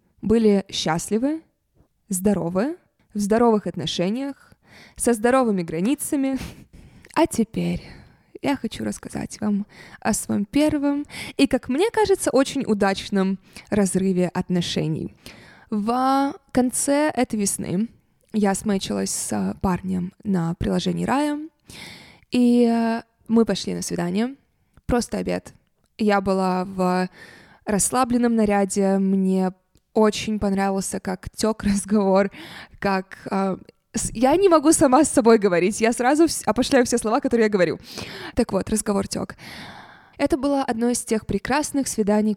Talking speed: 120 wpm